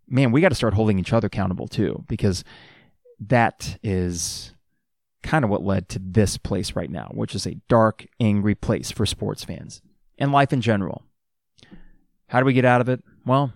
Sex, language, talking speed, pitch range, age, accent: male, English, 190 wpm, 105-140 Hz, 30-49, American